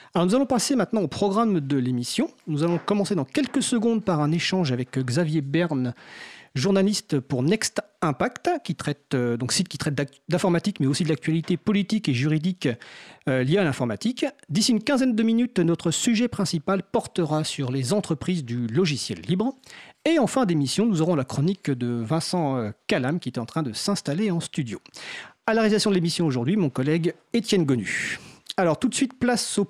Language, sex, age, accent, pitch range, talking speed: French, male, 40-59, French, 140-205 Hz, 190 wpm